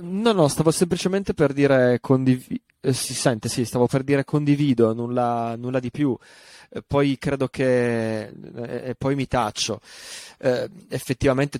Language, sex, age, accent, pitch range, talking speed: Italian, male, 20-39, native, 120-140 Hz, 150 wpm